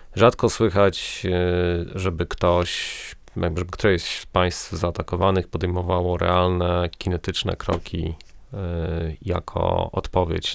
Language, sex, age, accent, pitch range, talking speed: Polish, male, 30-49, native, 90-105 Hz, 90 wpm